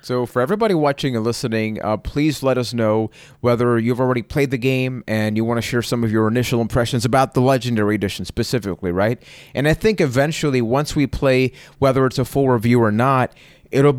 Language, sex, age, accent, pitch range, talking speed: English, male, 30-49, American, 110-140 Hz, 205 wpm